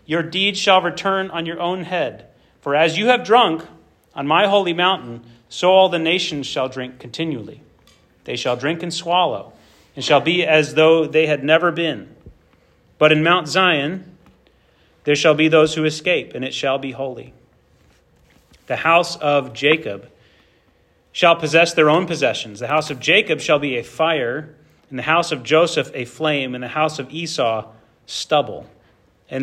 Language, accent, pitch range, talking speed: English, American, 125-165 Hz, 170 wpm